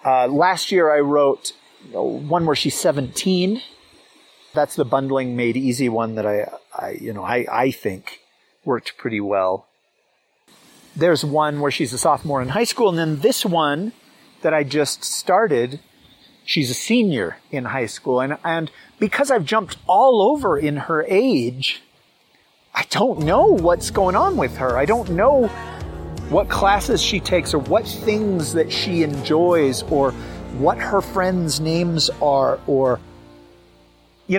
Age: 40-59